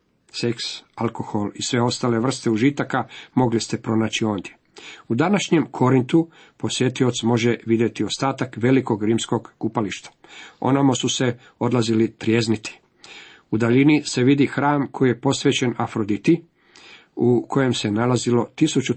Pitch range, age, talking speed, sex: 115-140 Hz, 50-69, 125 wpm, male